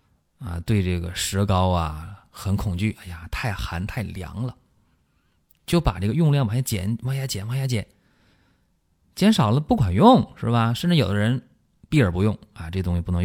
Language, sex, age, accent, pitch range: Chinese, male, 20-39, native, 85-115 Hz